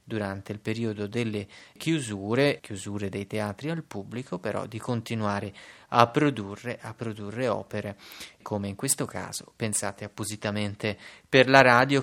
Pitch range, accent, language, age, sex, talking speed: 105-120 Hz, native, Italian, 30-49, male, 130 wpm